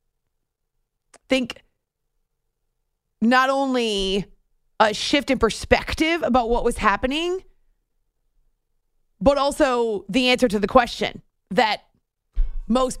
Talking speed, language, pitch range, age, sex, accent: 90 wpm, English, 225-275 Hz, 30-49, female, American